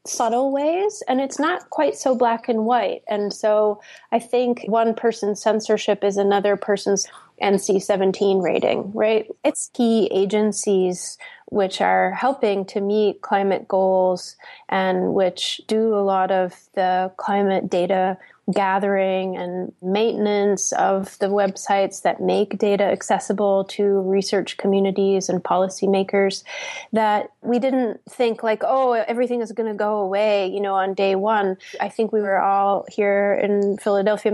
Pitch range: 195-230 Hz